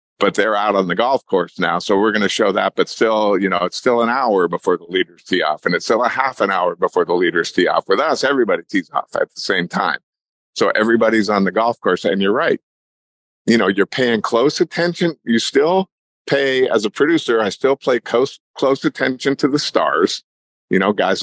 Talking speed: 230 wpm